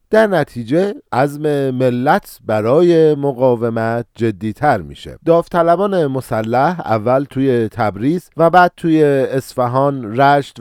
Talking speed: 110 wpm